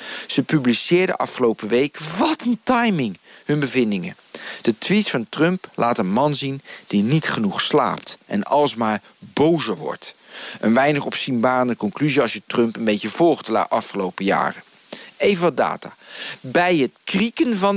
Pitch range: 135-190 Hz